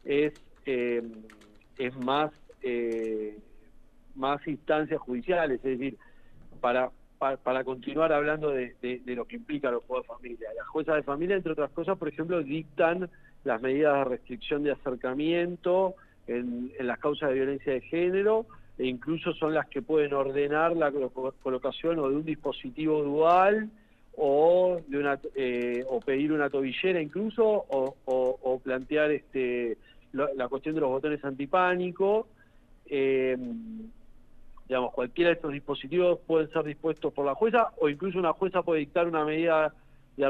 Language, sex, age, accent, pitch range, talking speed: Spanish, male, 40-59, Argentinian, 135-170 Hz, 155 wpm